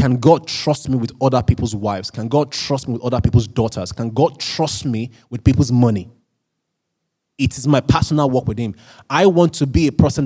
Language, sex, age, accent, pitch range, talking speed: English, male, 20-39, Nigerian, 120-155 Hz, 210 wpm